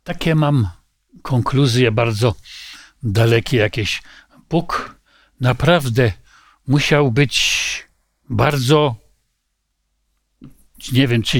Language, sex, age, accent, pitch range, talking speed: Polish, male, 50-69, native, 125-185 Hz, 75 wpm